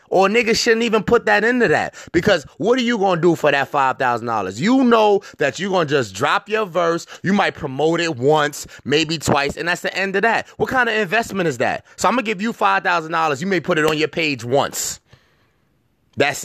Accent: American